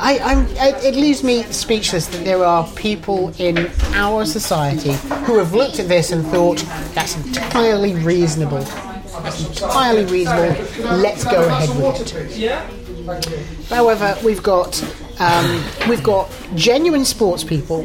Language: English